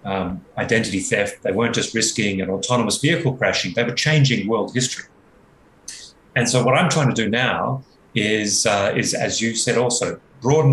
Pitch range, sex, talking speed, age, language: 110-130 Hz, male, 180 wpm, 30-49, English